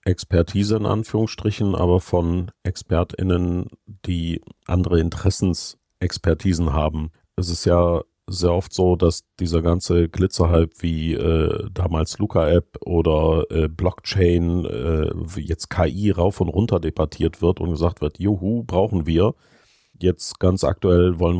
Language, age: German, 50-69